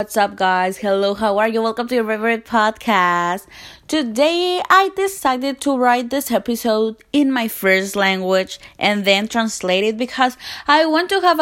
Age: 20-39